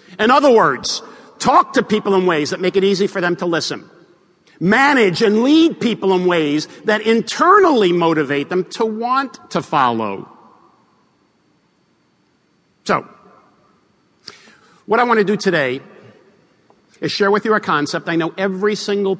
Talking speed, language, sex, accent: 145 wpm, English, male, American